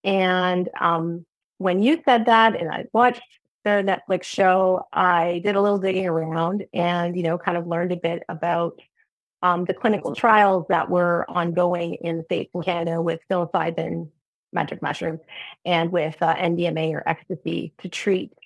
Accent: American